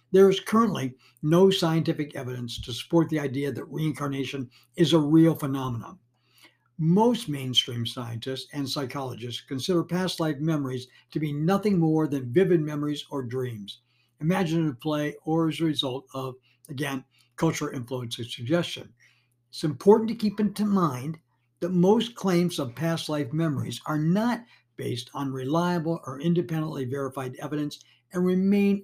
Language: English